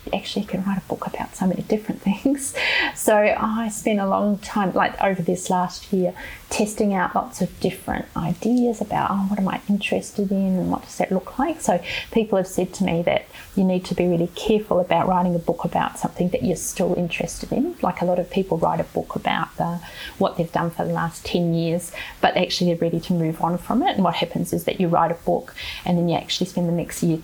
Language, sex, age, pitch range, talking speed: English, female, 30-49, 175-215 Hz, 235 wpm